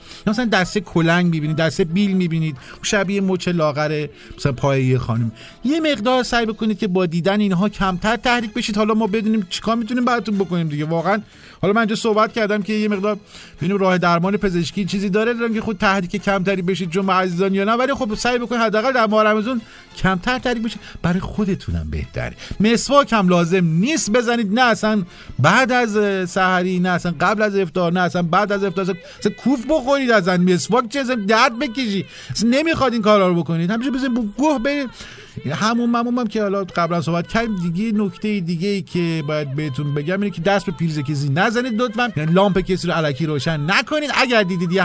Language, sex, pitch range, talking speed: Persian, male, 165-220 Hz, 190 wpm